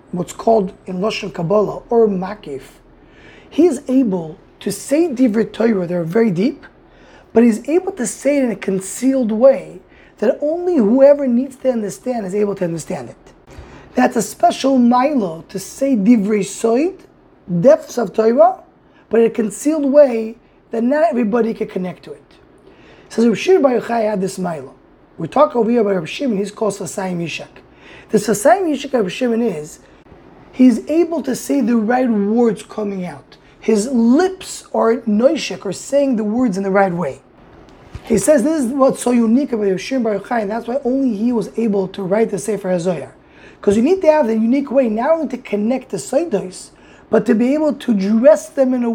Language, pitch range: English, 205-265 Hz